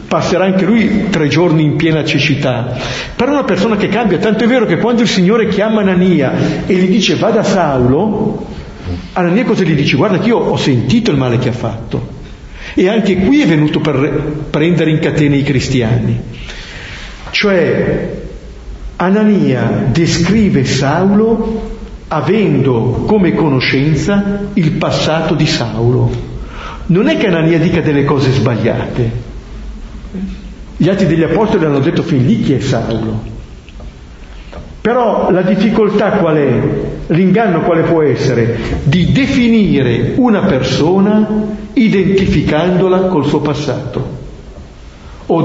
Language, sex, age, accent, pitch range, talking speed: Italian, male, 50-69, native, 135-205 Hz, 135 wpm